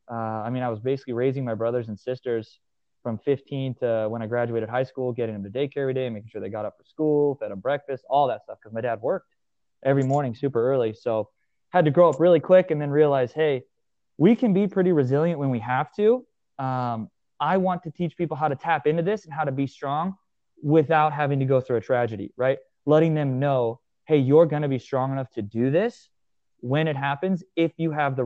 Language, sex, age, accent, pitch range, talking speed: English, male, 20-39, American, 120-155 Hz, 235 wpm